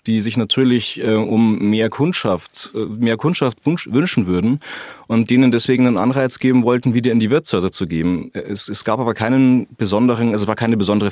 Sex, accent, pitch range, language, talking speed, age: male, German, 100-125 Hz, German, 185 wpm, 30-49